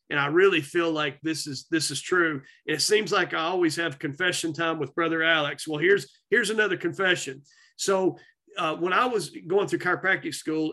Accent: American